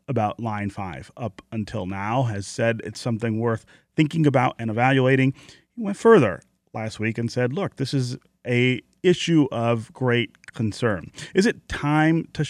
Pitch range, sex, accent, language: 110-135 Hz, male, American, English